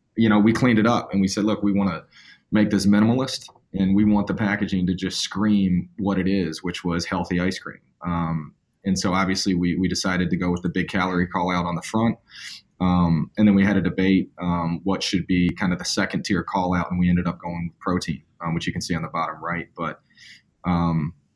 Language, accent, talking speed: English, American, 240 wpm